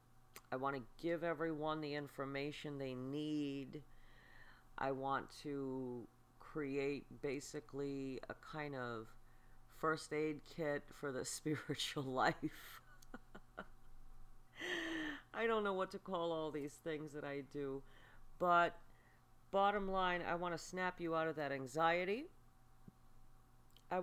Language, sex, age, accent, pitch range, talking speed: English, female, 40-59, American, 125-160 Hz, 120 wpm